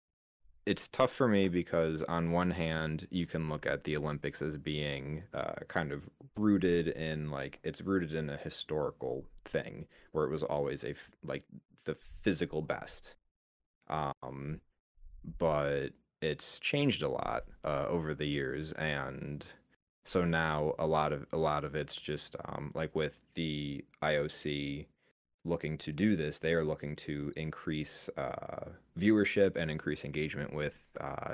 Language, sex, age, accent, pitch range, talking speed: English, male, 30-49, American, 75-85 Hz, 150 wpm